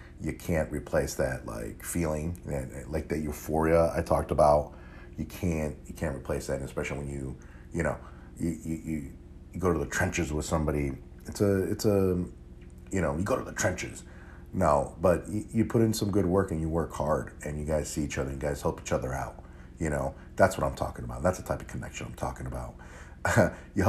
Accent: American